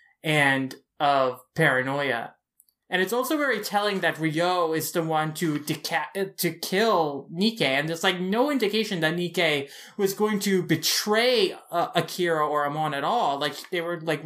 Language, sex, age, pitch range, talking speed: English, male, 20-39, 160-195 Hz, 165 wpm